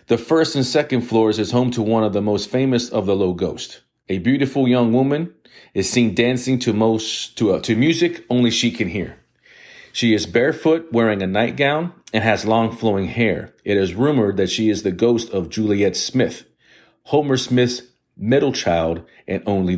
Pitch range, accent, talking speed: 100-125 Hz, American, 190 wpm